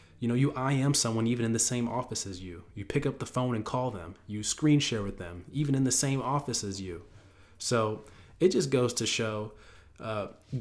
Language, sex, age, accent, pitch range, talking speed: English, male, 20-39, American, 100-125 Hz, 225 wpm